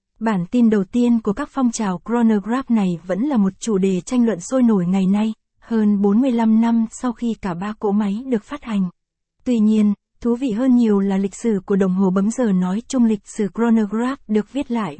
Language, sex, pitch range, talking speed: Vietnamese, female, 200-235 Hz, 220 wpm